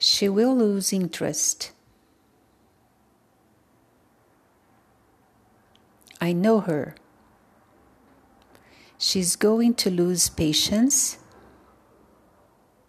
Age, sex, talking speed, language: 50-69, female, 55 wpm, English